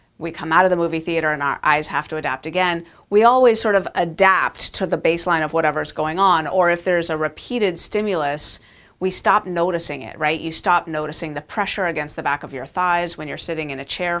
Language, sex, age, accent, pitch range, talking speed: English, female, 30-49, American, 160-185 Hz, 230 wpm